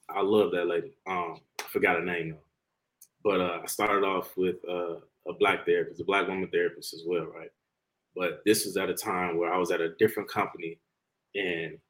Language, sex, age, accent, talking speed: English, male, 20-39, American, 205 wpm